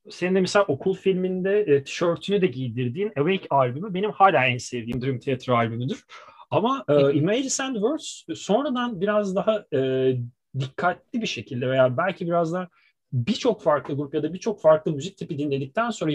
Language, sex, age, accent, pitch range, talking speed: Turkish, male, 30-49, native, 135-190 Hz, 155 wpm